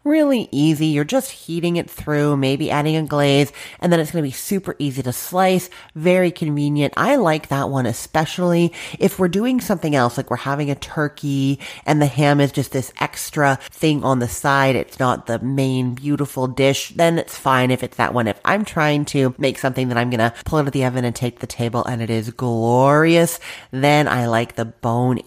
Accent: American